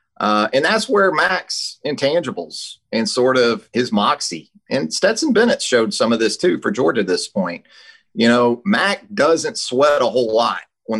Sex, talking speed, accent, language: male, 180 wpm, American, English